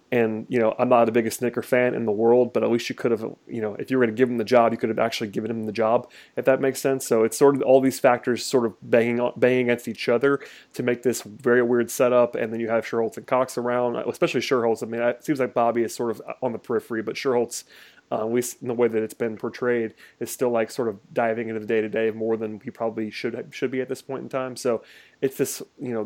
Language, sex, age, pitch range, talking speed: English, male, 30-49, 115-130 Hz, 285 wpm